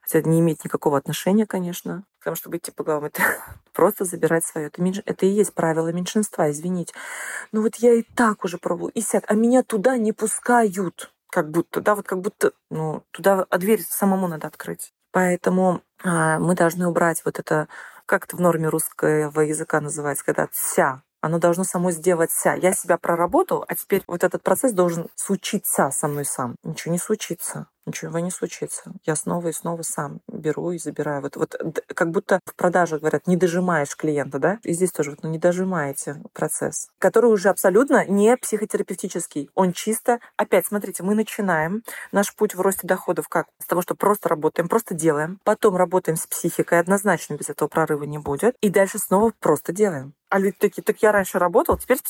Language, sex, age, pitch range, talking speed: Russian, female, 30-49, 165-210 Hz, 185 wpm